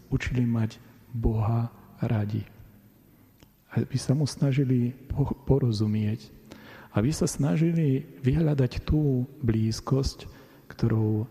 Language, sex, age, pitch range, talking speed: Slovak, male, 40-59, 115-130 Hz, 85 wpm